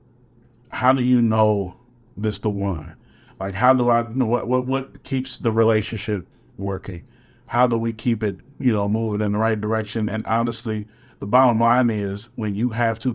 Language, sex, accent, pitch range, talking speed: English, male, American, 110-130 Hz, 185 wpm